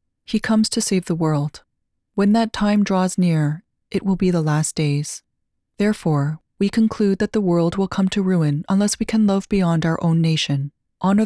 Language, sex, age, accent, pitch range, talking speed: English, female, 30-49, American, 150-200 Hz, 190 wpm